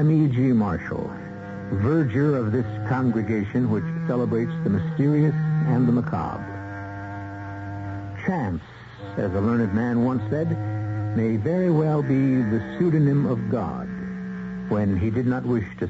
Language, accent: English, American